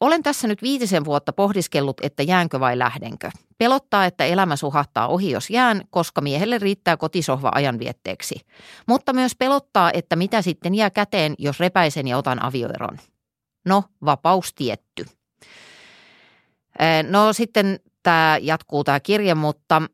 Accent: native